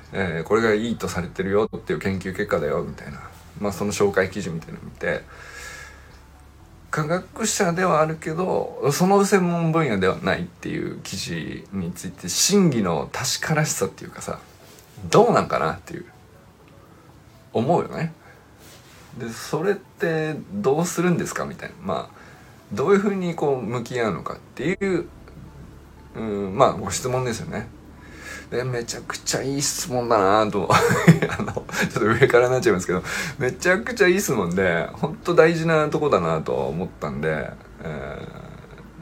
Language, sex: Japanese, male